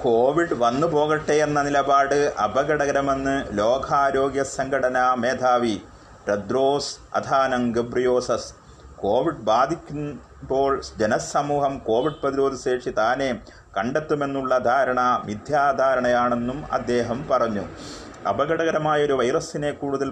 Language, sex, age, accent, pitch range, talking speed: Malayalam, male, 30-49, native, 120-140 Hz, 80 wpm